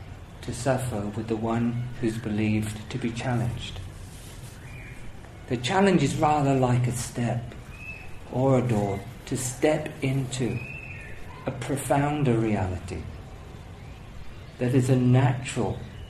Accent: British